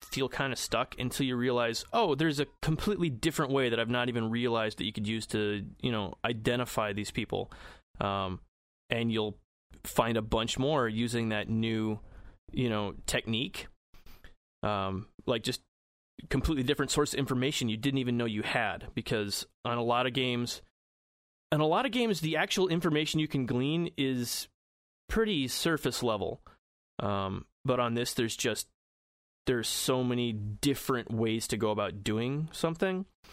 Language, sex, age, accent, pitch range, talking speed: English, male, 30-49, American, 110-140 Hz, 165 wpm